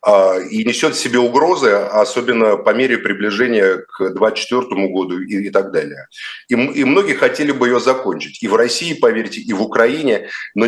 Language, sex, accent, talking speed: Russian, male, native, 180 wpm